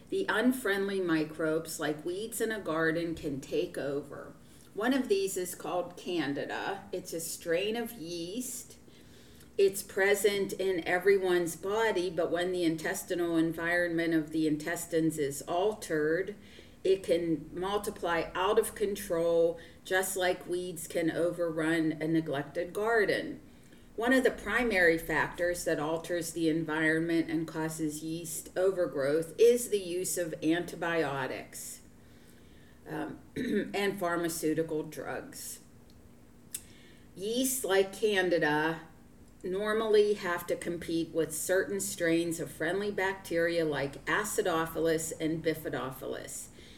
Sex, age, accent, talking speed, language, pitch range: female, 40-59, American, 115 wpm, English, 160-195 Hz